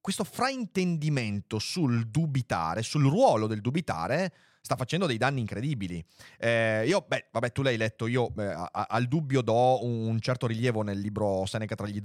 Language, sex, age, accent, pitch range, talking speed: Italian, male, 30-49, native, 115-145 Hz, 175 wpm